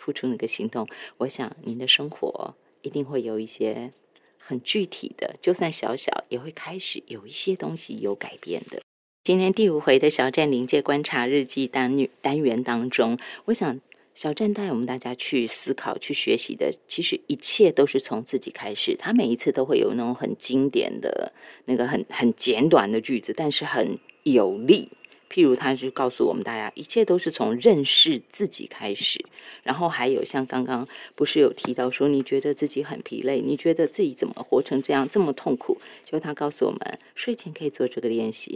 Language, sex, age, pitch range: Chinese, female, 30-49, 125-190 Hz